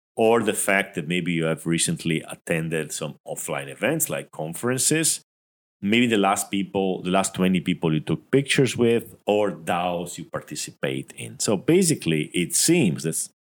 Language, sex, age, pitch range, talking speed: English, male, 40-59, 80-110 Hz, 160 wpm